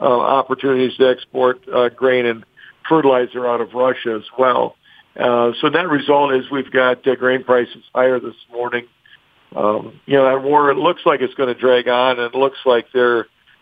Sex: male